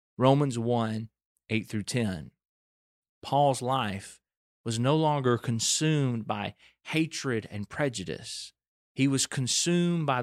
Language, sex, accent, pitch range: English, male, American, 110-145 Hz